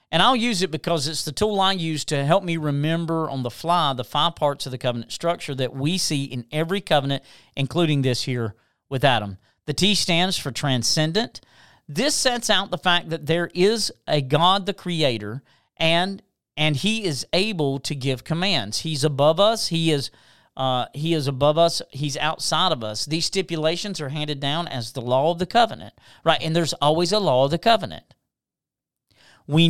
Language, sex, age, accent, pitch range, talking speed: English, male, 40-59, American, 135-175 Hz, 190 wpm